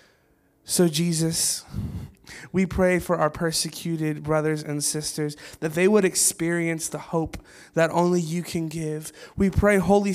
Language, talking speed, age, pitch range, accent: English, 140 wpm, 20-39, 165-190 Hz, American